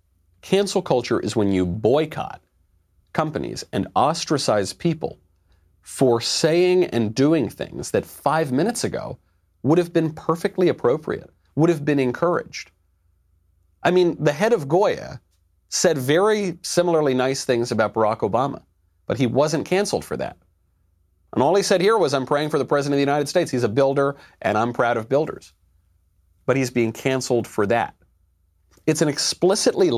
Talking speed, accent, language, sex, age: 160 wpm, American, English, male, 40-59